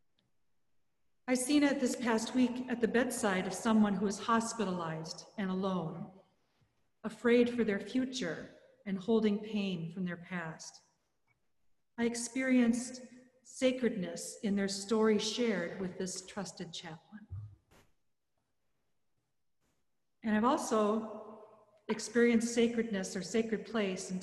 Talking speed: 115 wpm